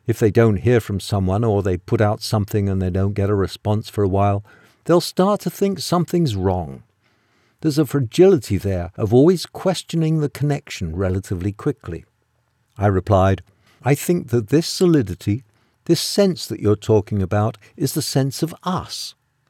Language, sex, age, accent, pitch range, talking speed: English, male, 50-69, British, 105-150 Hz, 170 wpm